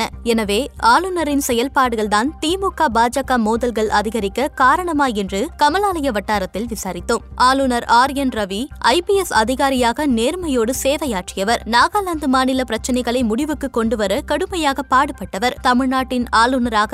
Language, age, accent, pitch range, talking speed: Tamil, 20-39, native, 225-275 Hz, 95 wpm